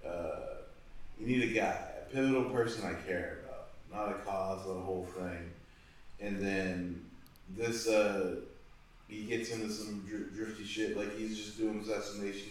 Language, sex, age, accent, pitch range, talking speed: English, male, 20-39, American, 95-105 Hz, 160 wpm